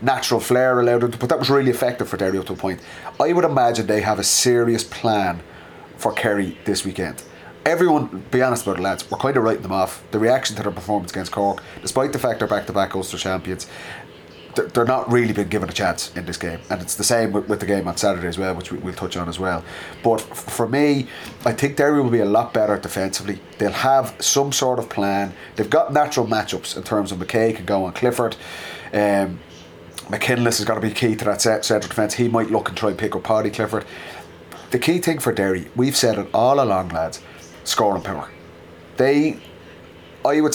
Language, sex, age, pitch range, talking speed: English, male, 30-49, 90-120 Hz, 220 wpm